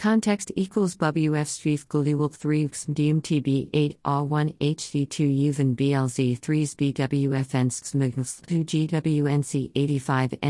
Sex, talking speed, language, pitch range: female, 90 wpm, English, 130-150 Hz